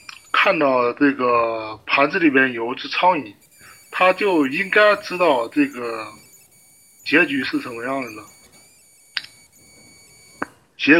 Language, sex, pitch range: Chinese, male, 120-165 Hz